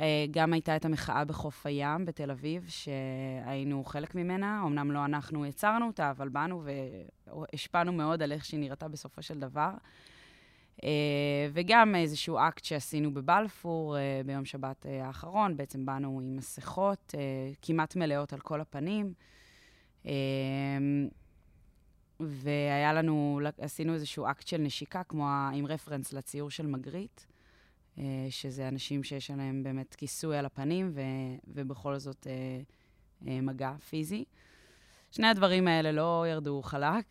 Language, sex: Hebrew, female